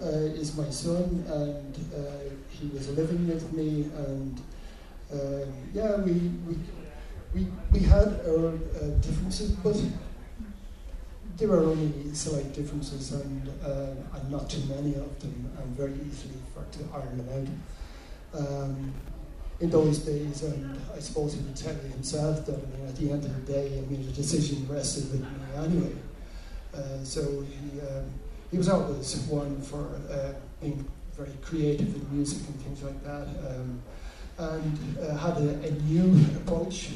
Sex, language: male, English